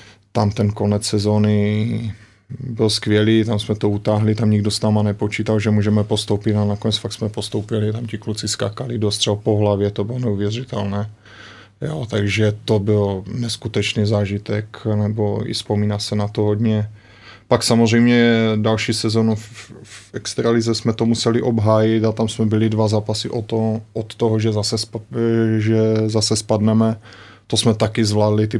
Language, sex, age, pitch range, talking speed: Slovak, male, 20-39, 105-115 Hz, 165 wpm